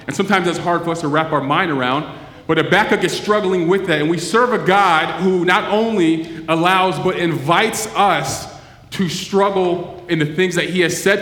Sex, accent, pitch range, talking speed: male, American, 150-185 Hz, 210 wpm